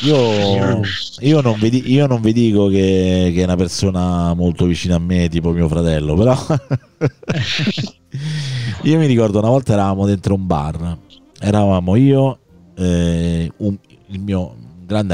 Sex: male